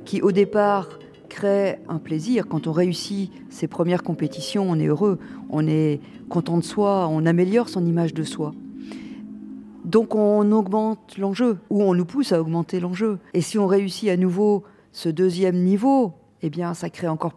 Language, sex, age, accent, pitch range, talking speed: French, female, 50-69, French, 170-215 Hz, 175 wpm